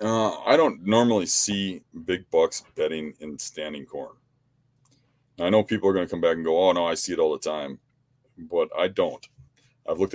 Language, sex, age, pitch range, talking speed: English, male, 30-49, 95-135 Hz, 205 wpm